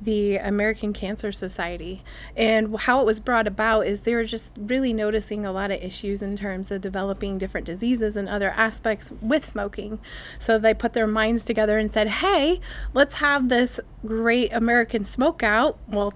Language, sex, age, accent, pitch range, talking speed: English, female, 20-39, American, 200-225 Hz, 180 wpm